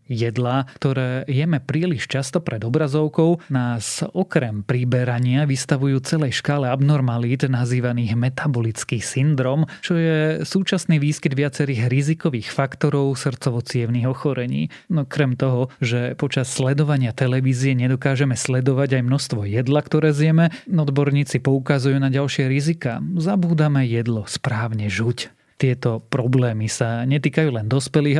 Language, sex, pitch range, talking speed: Slovak, male, 125-150 Hz, 115 wpm